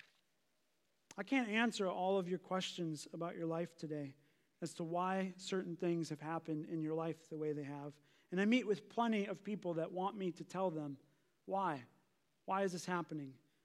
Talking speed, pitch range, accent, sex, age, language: 190 wpm, 180-210 Hz, American, male, 30-49, English